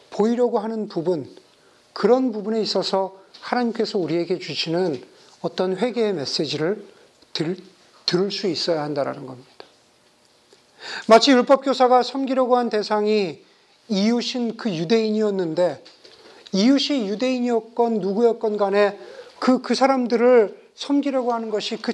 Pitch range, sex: 180-230 Hz, male